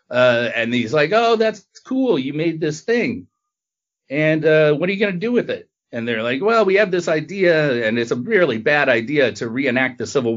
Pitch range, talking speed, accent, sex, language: 115-155 Hz, 225 wpm, American, male, English